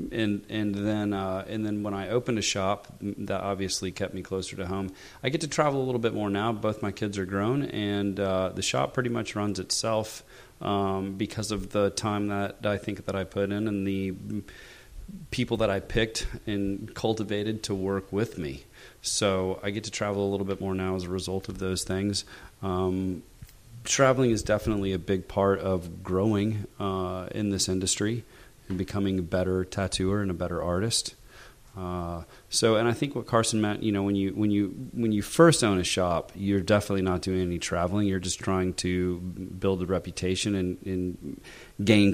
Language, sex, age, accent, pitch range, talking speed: English, male, 30-49, American, 95-110 Hz, 195 wpm